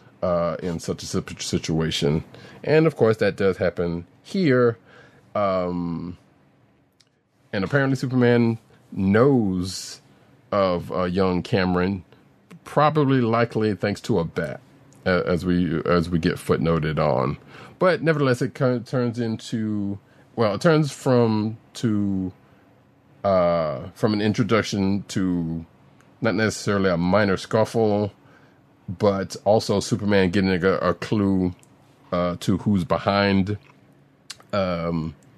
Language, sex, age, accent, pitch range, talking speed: English, male, 30-49, American, 90-120 Hz, 115 wpm